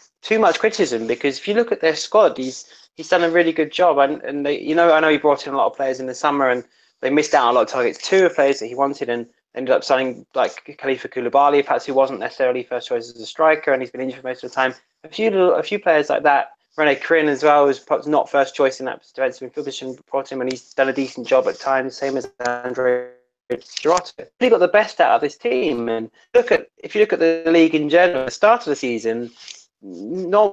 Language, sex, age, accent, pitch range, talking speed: English, male, 20-39, British, 130-165 Hz, 265 wpm